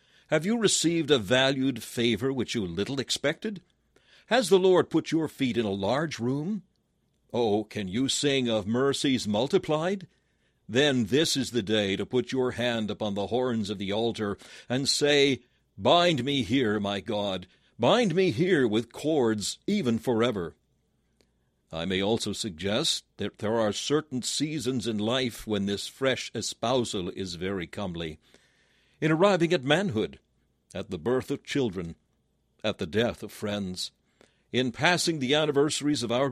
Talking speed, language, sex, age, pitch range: 155 wpm, English, male, 60-79, 105-145 Hz